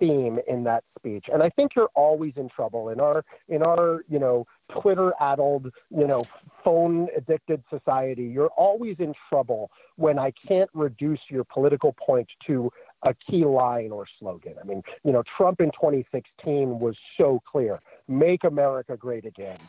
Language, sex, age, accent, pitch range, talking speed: English, male, 40-59, American, 130-185 Hz, 160 wpm